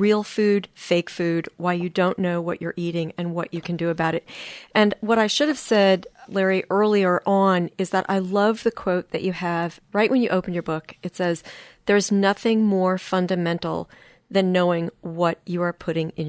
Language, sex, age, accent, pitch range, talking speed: English, female, 40-59, American, 165-195 Hz, 205 wpm